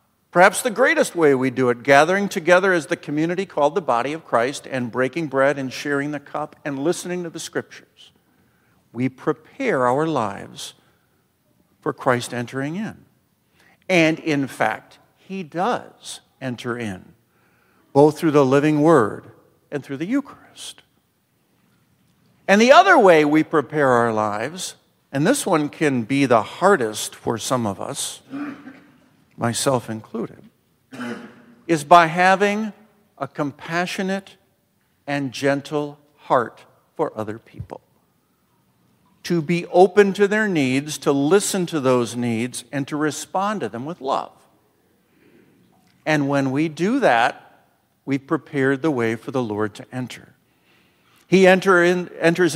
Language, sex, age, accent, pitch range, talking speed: English, male, 50-69, American, 130-175 Hz, 135 wpm